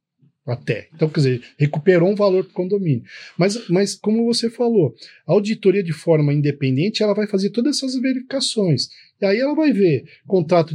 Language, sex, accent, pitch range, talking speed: Portuguese, male, Brazilian, 150-200 Hz, 180 wpm